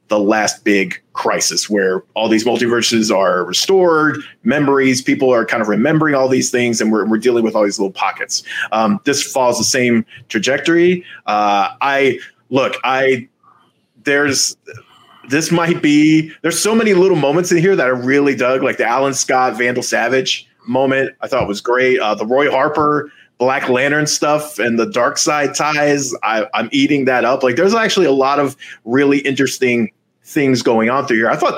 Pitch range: 120-150 Hz